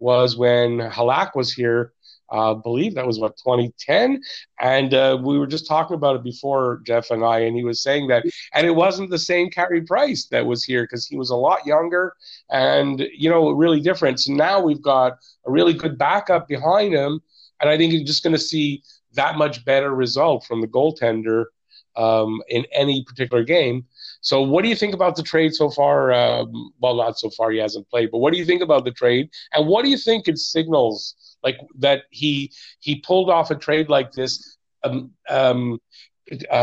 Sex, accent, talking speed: male, American, 205 wpm